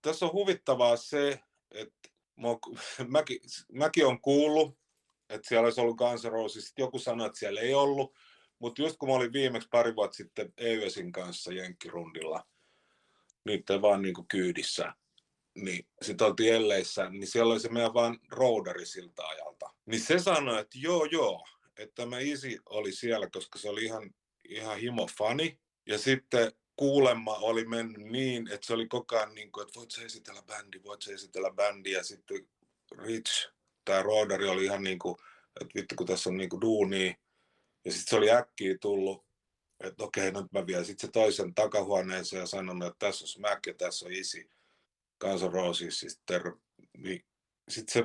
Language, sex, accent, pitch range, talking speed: Finnish, male, native, 105-130 Hz, 170 wpm